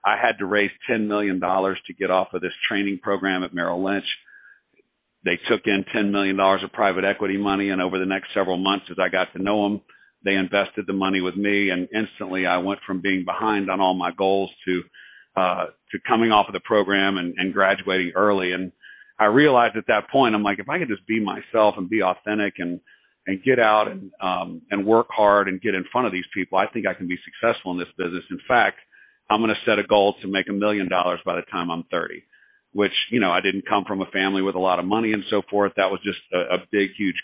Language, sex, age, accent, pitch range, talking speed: English, male, 50-69, American, 95-105 Hz, 240 wpm